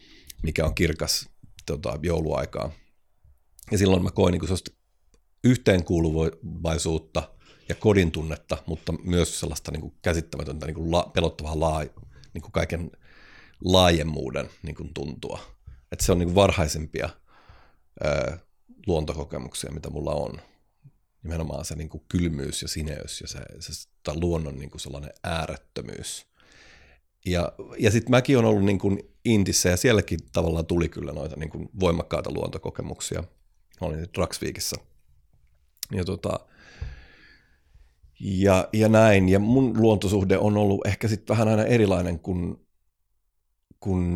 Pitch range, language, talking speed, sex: 80-95 Hz, Finnish, 130 wpm, male